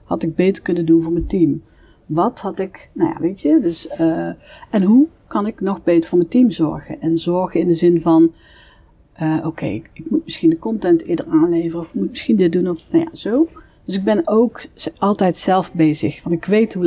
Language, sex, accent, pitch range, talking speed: Dutch, female, Dutch, 165-240 Hz, 230 wpm